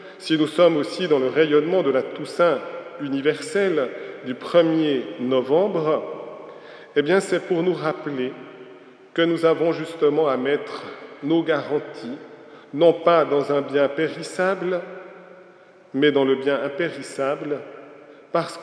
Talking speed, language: 130 wpm, French